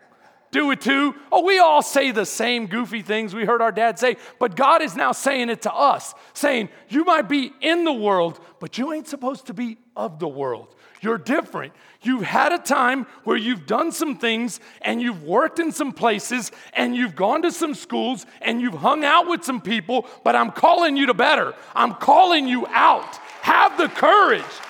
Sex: male